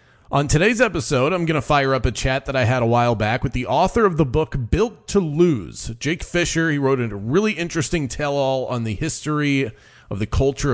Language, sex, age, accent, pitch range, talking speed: English, male, 30-49, American, 115-145 Hz, 220 wpm